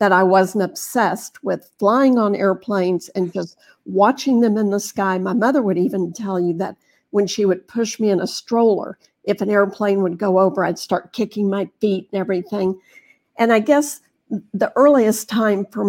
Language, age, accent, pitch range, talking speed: English, 50-69, American, 190-220 Hz, 190 wpm